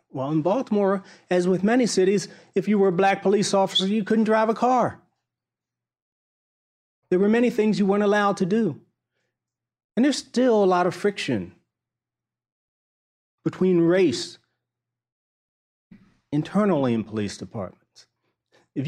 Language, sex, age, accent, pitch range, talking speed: English, male, 40-59, American, 135-195 Hz, 135 wpm